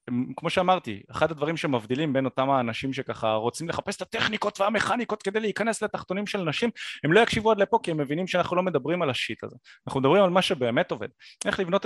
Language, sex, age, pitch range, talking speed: Hebrew, male, 30-49, 130-190 Hz, 215 wpm